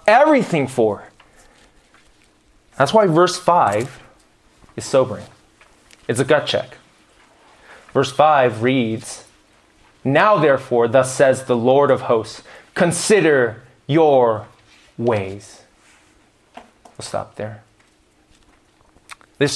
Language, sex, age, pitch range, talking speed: English, male, 20-39, 135-195 Hz, 90 wpm